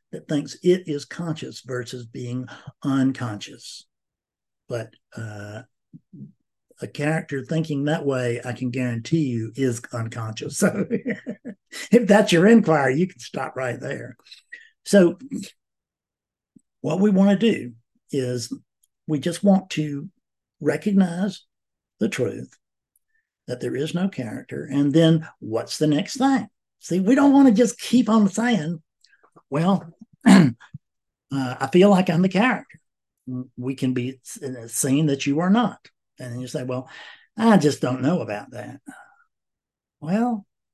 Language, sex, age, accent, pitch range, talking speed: English, male, 60-79, American, 130-205 Hz, 135 wpm